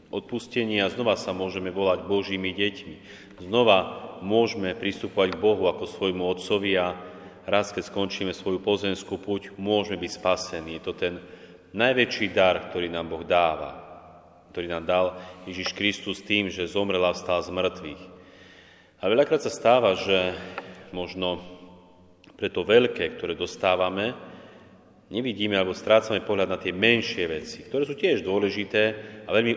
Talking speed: 140 wpm